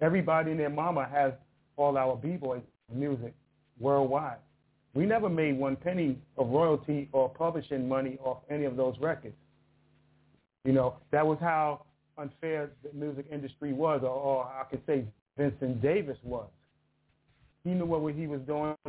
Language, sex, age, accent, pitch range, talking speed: English, male, 40-59, American, 130-155 Hz, 160 wpm